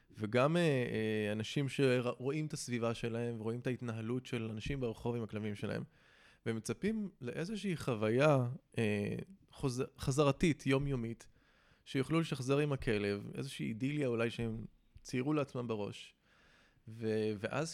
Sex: male